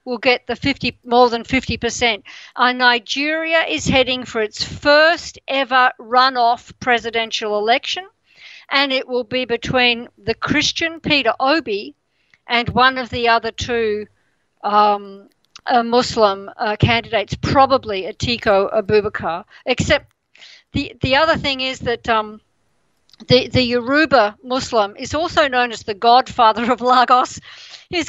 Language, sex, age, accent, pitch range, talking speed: English, female, 50-69, Australian, 235-280 Hz, 135 wpm